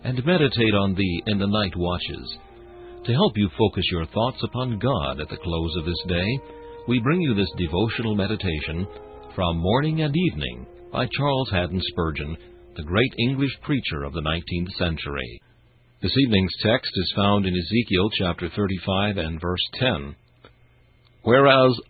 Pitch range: 80-115 Hz